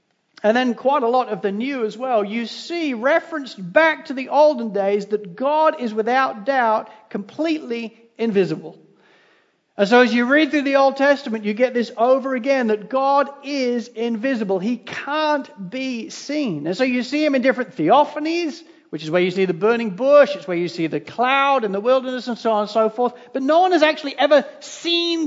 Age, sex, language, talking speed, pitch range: 40-59, male, English, 200 wpm, 210-285 Hz